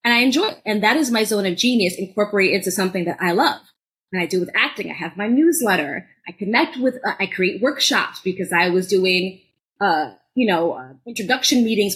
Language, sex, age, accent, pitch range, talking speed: English, female, 20-39, American, 190-255 Hz, 215 wpm